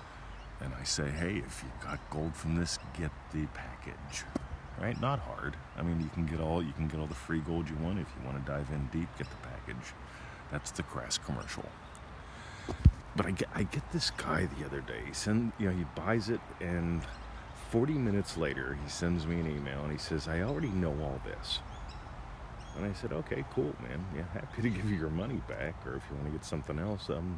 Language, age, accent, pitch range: English, 40-59, American, 75-105 Hz